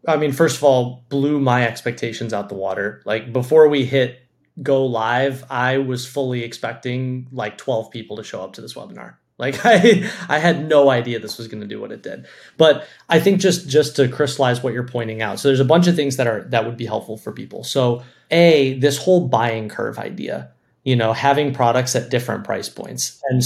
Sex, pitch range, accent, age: male, 115-140 Hz, American, 30-49